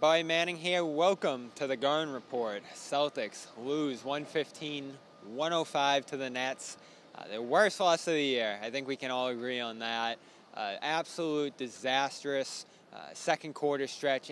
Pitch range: 135-165 Hz